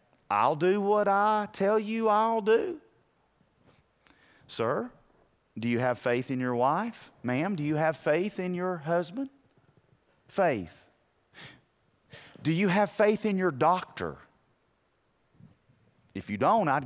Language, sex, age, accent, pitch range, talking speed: English, male, 40-59, American, 165-260 Hz, 130 wpm